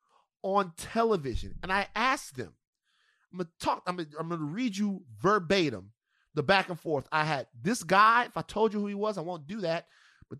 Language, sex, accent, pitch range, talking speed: English, male, American, 160-230 Hz, 200 wpm